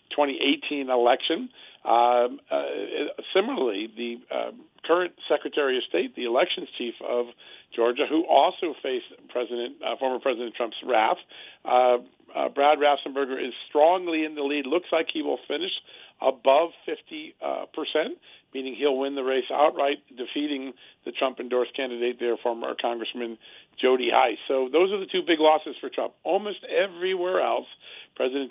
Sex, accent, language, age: male, American, English, 50-69